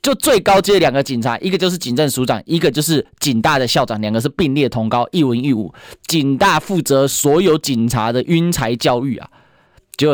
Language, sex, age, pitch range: Chinese, male, 20-39, 140-210 Hz